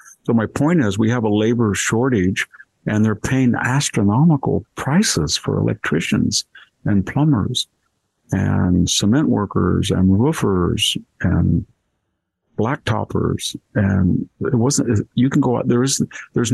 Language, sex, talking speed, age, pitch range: English, male, 130 wpm, 50-69, 95-120 Hz